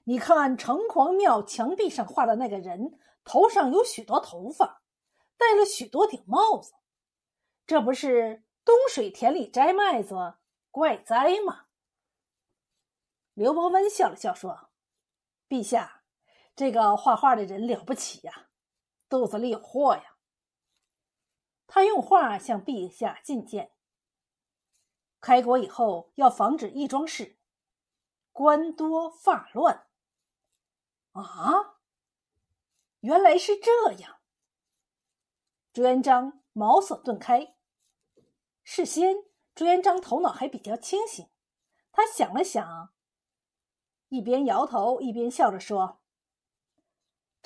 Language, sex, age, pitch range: Chinese, female, 50-69, 235-370 Hz